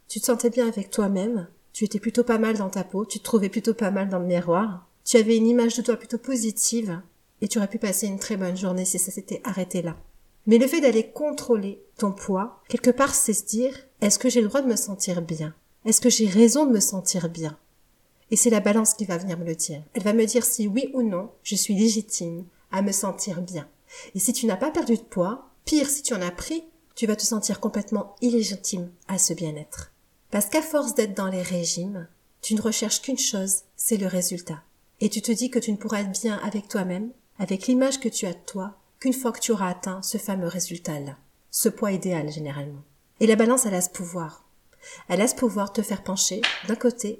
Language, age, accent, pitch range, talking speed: French, 40-59, French, 190-240 Hz, 240 wpm